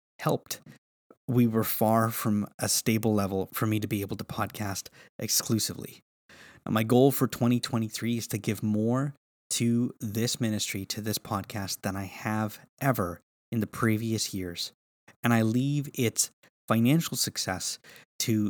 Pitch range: 100-120 Hz